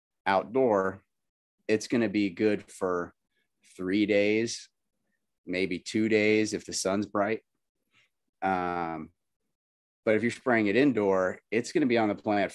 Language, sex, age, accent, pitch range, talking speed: English, male, 30-49, American, 90-110 Hz, 145 wpm